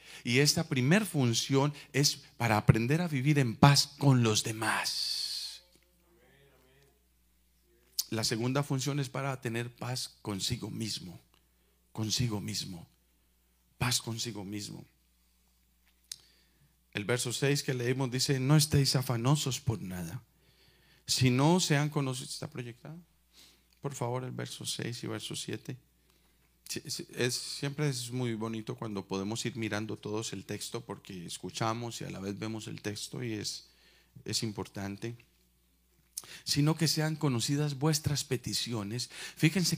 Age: 40-59